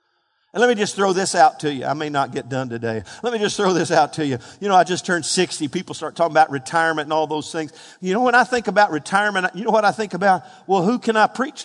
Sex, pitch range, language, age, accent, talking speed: male, 165-240 Hz, English, 50-69, American, 285 wpm